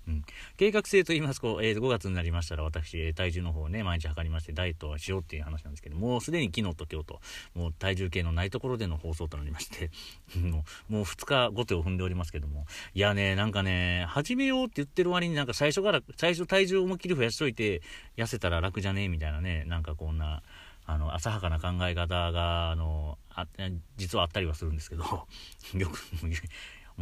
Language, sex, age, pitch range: Japanese, male, 40-59, 80-110 Hz